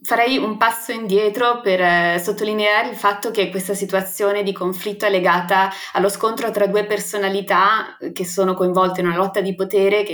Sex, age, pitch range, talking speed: female, 20-39, 180-210 Hz, 180 wpm